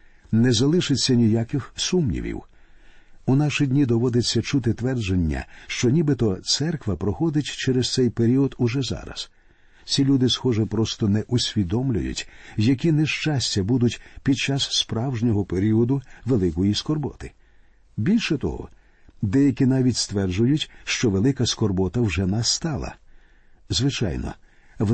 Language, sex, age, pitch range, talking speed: Ukrainian, male, 50-69, 100-135 Hz, 110 wpm